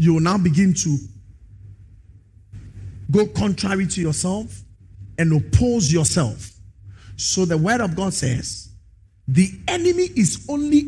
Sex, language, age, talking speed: male, English, 50-69, 120 wpm